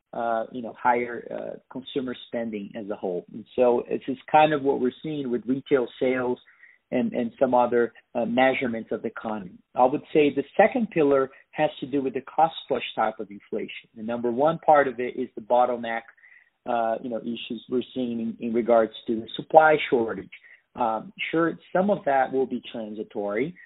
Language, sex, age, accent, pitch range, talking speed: English, male, 40-59, American, 120-150 Hz, 195 wpm